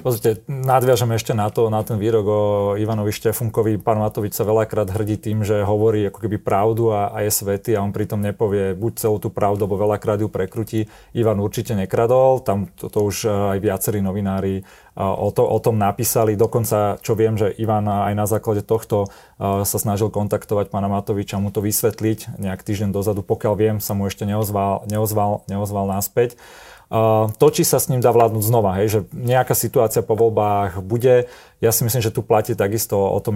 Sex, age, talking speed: male, 30-49, 190 wpm